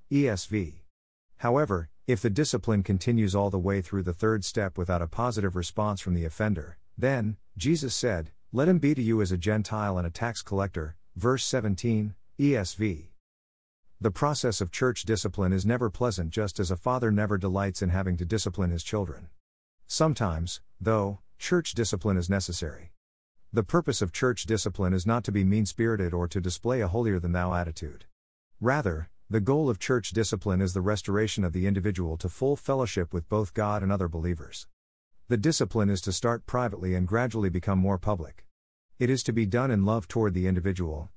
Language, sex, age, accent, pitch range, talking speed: English, male, 50-69, American, 90-115 Hz, 180 wpm